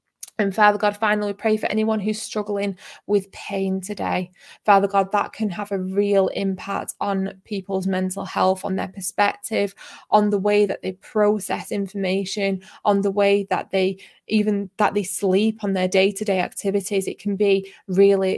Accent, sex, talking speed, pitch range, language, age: British, female, 175 wpm, 190-210 Hz, English, 20-39